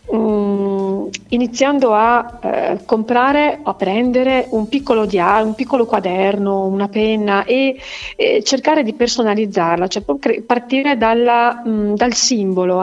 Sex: female